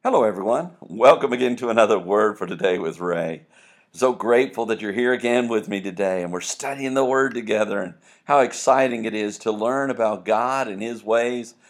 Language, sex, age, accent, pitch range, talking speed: English, male, 50-69, American, 95-120 Hz, 195 wpm